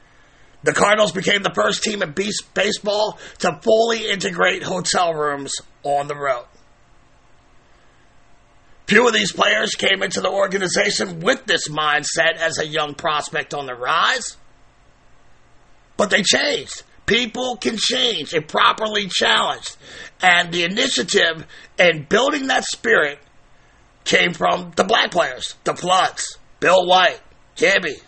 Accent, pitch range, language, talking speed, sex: American, 155-205 Hz, English, 130 wpm, male